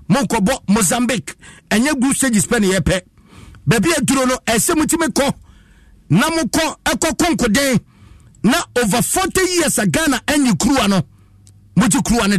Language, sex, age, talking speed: English, male, 50-69, 165 wpm